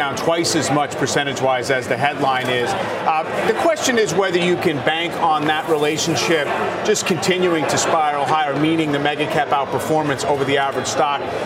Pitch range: 145-180 Hz